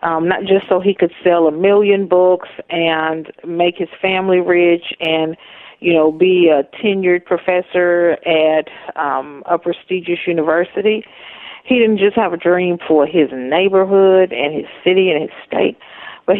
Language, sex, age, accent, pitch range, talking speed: English, female, 40-59, American, 175-230 Hz, 155 wpm